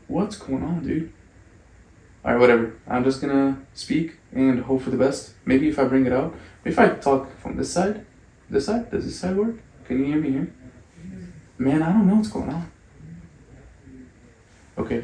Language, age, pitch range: English, 20-39, 120-140 Hz